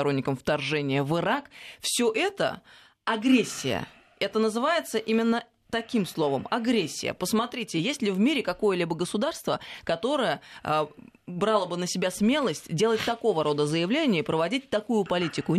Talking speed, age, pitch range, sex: 135 wpm, 20-39, 155-225 Hz, female